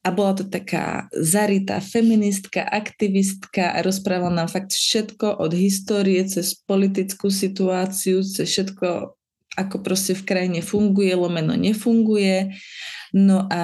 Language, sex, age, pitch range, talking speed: Slovak, female, 20-39, 175-210 Hz, 125 wpm